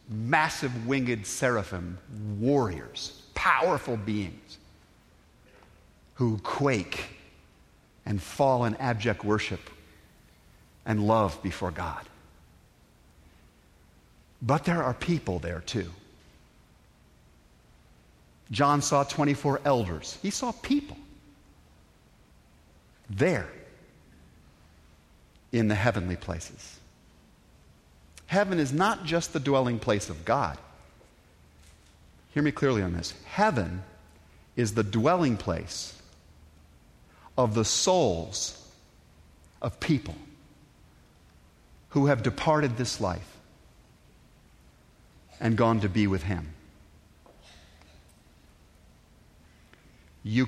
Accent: American